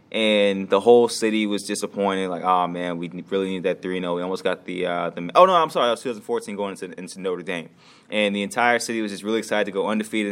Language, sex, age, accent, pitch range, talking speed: English, male, 20-39, American, 105-145 Hz, 255 wpm